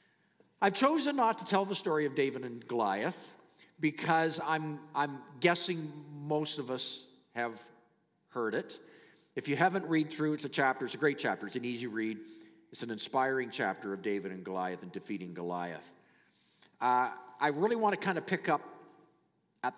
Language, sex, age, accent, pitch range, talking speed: English, male, 50-69, American, 110-160 Hz, 175 wpm